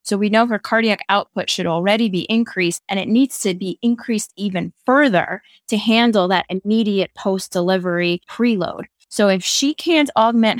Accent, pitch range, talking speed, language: American, 180-215 Hz, 165 wpm, English